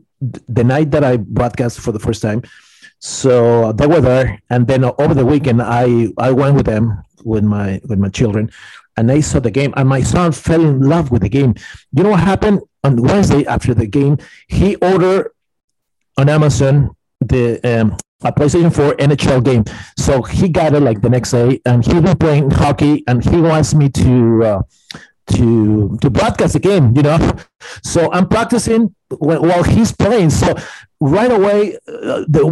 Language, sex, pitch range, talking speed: English, male, 120-155 Hz, 185 wpm